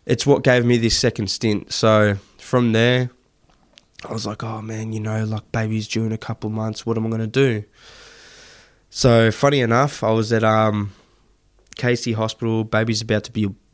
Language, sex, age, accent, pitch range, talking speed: English, male, 10-29, Australian, 105-115 Hz, 190 wpm